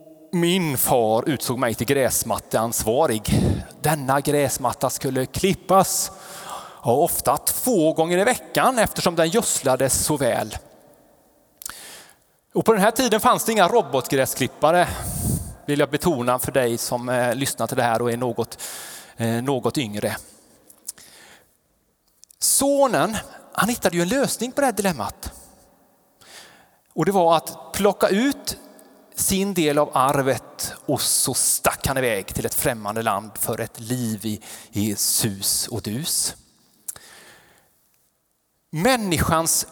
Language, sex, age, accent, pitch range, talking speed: Swedish, male, 30-49, Norwegian, 125-195 Hz, 120 wpm